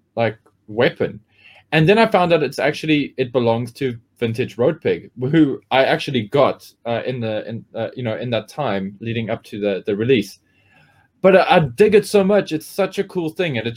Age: 20-39